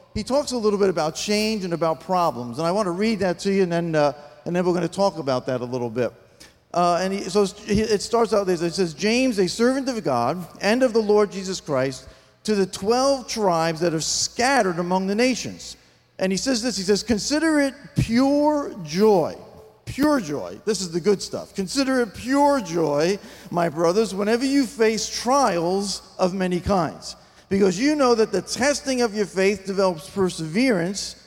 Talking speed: 200 wpm